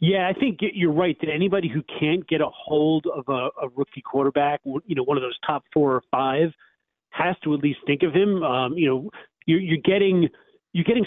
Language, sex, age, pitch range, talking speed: English, male, 40-59, 135-160 Hz, 220 wpm